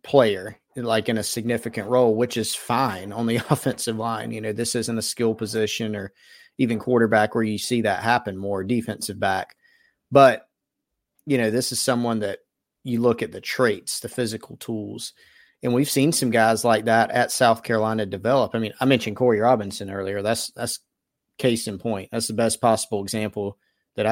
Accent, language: American, English